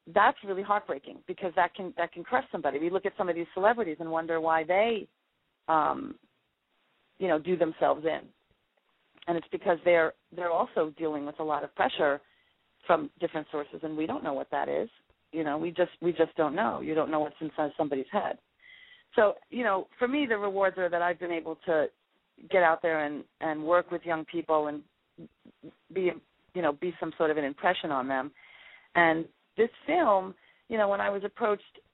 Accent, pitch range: American, 160-190 Hz